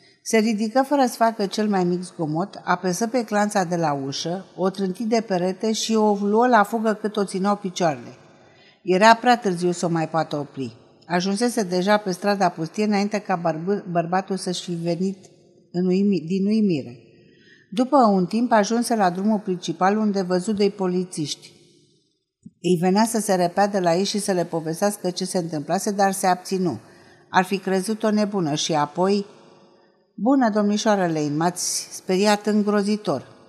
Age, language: 50-69, Romanian